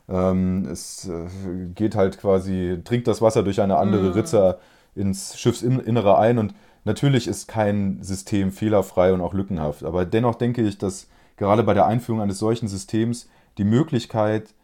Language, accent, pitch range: German, German, 95-115 Hz